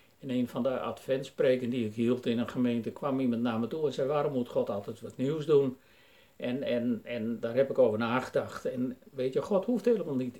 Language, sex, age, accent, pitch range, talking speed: Dutch, male, 60-79, Dutch, 120-180 Hz, 225 wpm